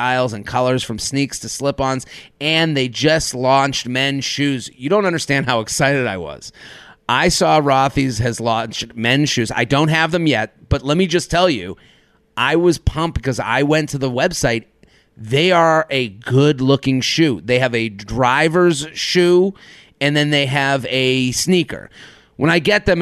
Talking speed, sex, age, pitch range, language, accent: 175 wpm, male, 30-49, 125-155 Hz, English, American